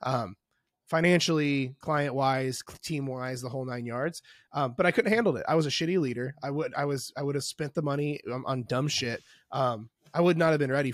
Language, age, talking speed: English, 20-39, 220 wpm